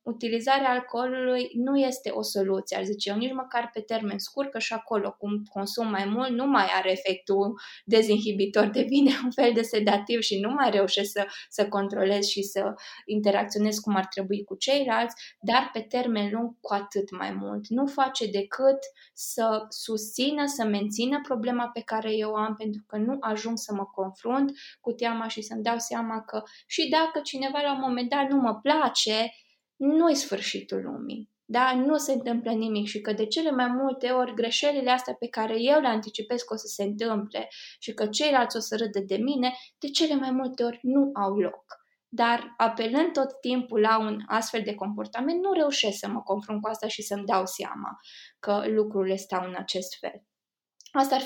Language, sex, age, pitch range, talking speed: Romanian, female, 20-39, 205-255 Hz, 190 wpm